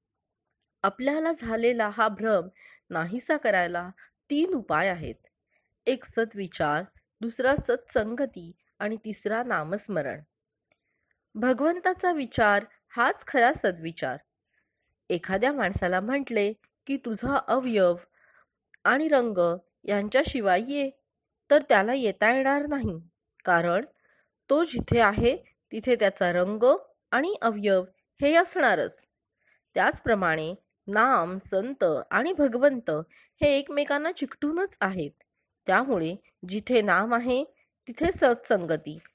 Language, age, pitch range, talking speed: Marathi, 30-49, 190-275 Hz, 95 wpm